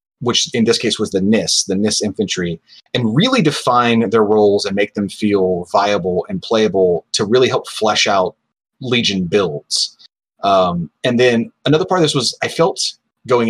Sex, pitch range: male, 105-125 Hz